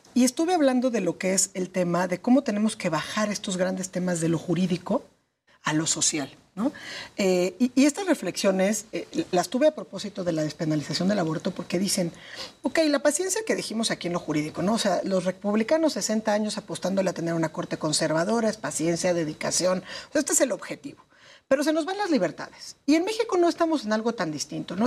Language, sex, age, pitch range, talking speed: Spanish, female, 40-59, 170-220 Hz, 210 wpm